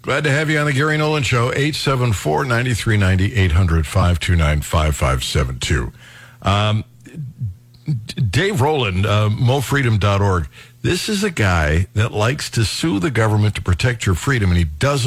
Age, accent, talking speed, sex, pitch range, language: 60-79, American, 125 wpm, male, 100-125 Hz, English